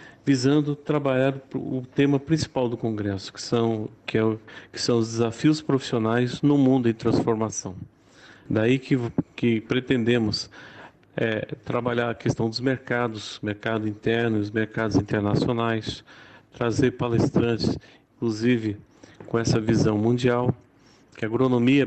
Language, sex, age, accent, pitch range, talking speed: Portuguese, male, 40-59, Brazilian, 115-135 Hz, 115 wpm